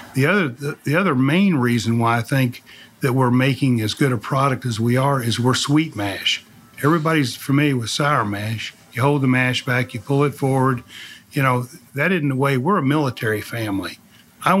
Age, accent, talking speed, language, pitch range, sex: 50-69, American, 200 wpm, English, 125-150 Hz, male